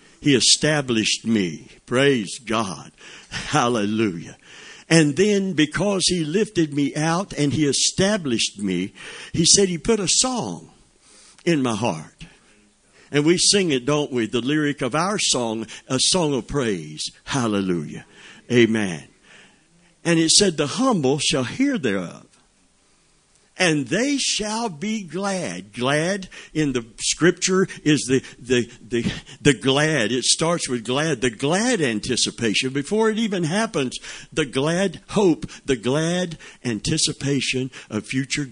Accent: American